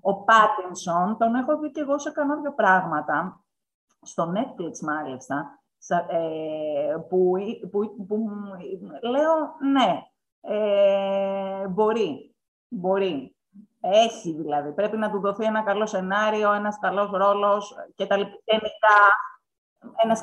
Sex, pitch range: female, 170-240 Hz